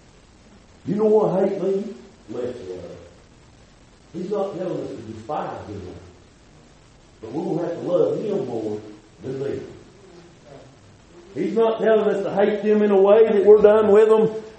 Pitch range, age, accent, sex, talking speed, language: 170-250 Hz, 50-69, American, male, 165 wpm, English